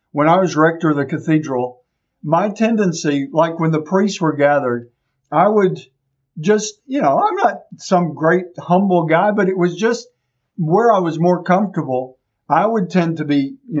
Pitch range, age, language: 130-175 Hz, 50-69, English